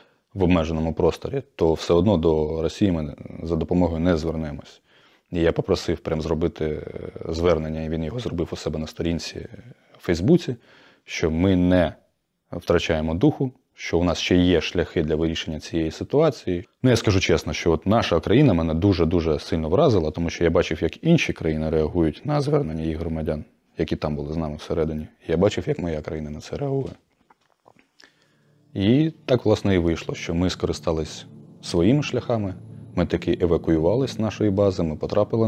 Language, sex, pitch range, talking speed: Russian, male, 80-115 Hz, 170 wpm